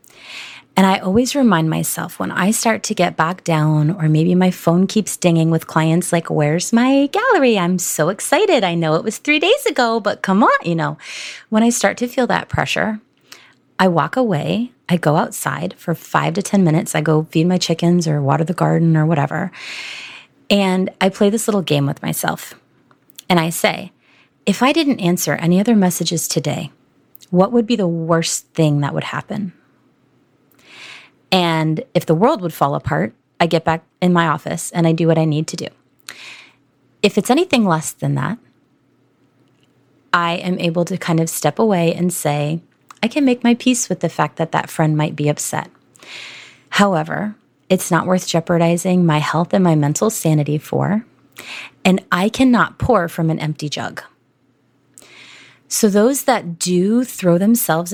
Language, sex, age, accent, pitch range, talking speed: English, female, 30-49, American, 160-205 Hz, 180 wpm